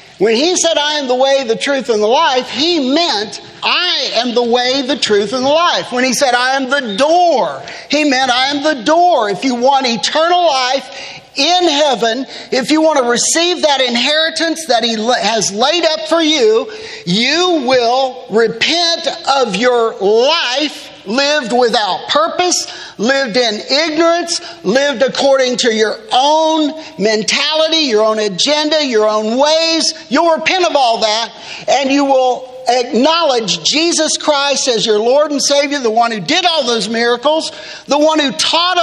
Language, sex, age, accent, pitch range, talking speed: English, male, 50-69, American, 245-320 Hz, 165 wpm